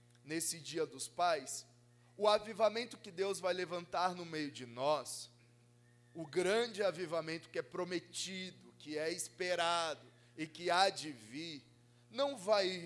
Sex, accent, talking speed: male, Brazilian, 140 wpm